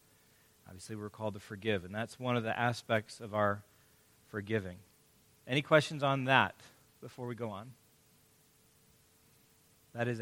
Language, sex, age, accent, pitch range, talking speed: English, male, 40-59, American, 110-145 Hz, 140 wpm